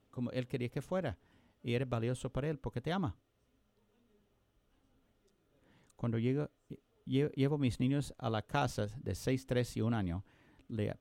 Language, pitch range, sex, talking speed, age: English, 105-130 Hz, male, 160 wpm, 50-69